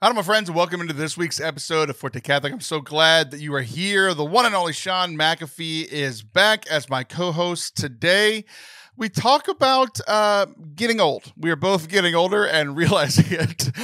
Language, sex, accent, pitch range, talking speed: English, male, American, 145-205 Hz, 195 wpm